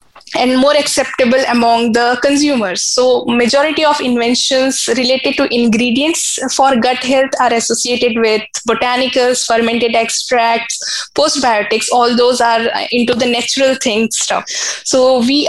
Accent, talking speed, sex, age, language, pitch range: Indian, 130 wpm, female, 10-29, English, 235-285 Hz